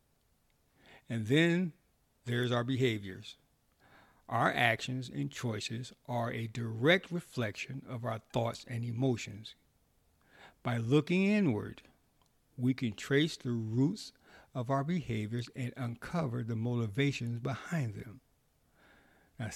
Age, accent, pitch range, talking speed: 60-79, American, 115-135 Hz, 110 wpm